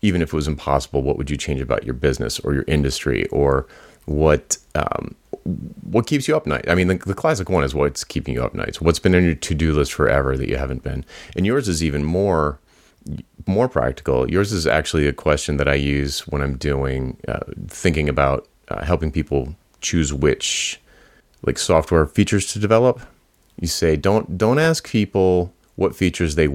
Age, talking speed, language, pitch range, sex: 30-49, 200 wpm, English, 70-90 Hz, male